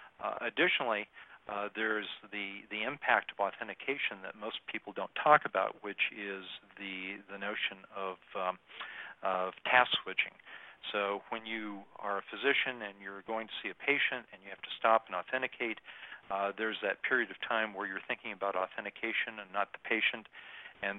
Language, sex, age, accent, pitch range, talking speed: English, male, 40-59, American, 100-115 Hz, 175 wpm